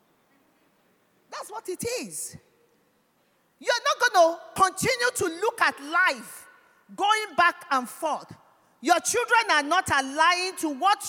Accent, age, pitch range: Nigerian, 40-59, 250-375 Hz